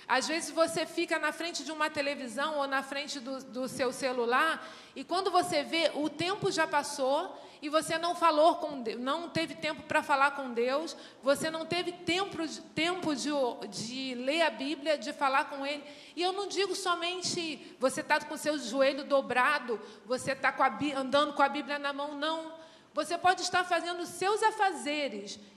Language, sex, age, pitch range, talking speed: Portuguese, female, 40-59, 275-345 Hz, 185 wpm